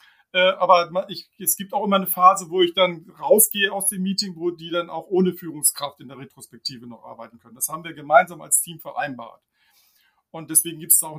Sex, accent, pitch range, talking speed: male, German, 155-190 Hz, 210 wpm